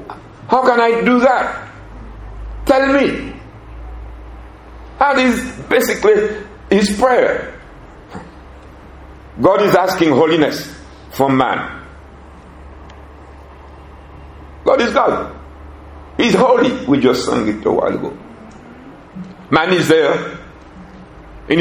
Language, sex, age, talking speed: English, male, 60-79, 95 wpm